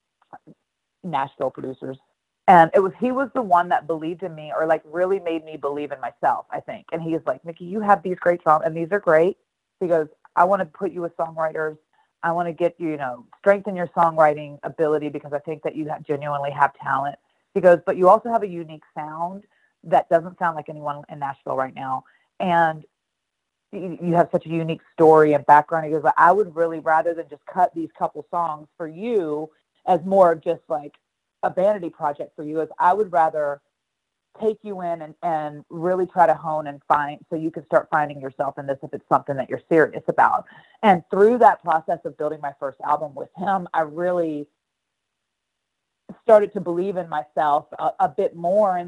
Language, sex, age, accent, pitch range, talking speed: English, female, 30-49, American, 150-180 Hz, 205 wpm